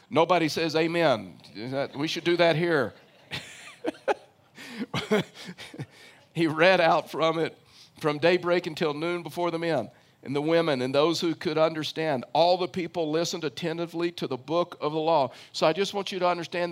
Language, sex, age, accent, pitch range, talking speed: English, male, 50-69, American, 150-175 Hz, 165 wpm